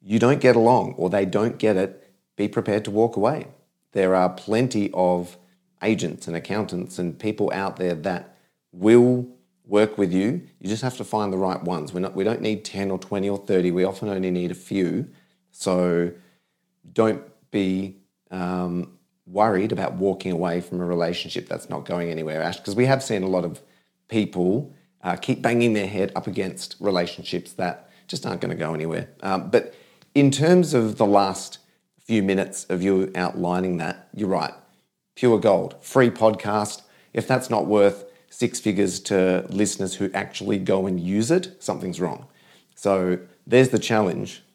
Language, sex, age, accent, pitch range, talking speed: English, male, 30-49, Australian, 90-110 Hz, 175 wpm